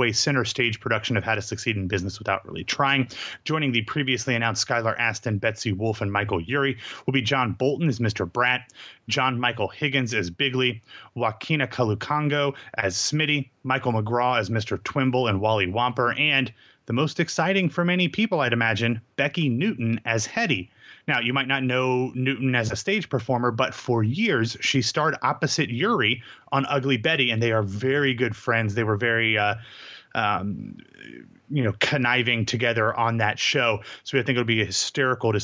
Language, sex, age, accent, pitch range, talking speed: English, male, 30-49, American, 110-135 Hz, 180 wpm